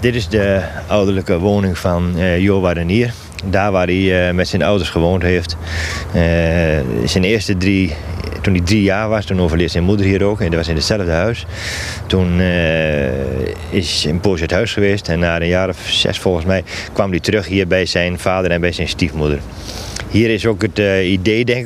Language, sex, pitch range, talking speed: Dutch, male, 85-105 Hz, 205 wpm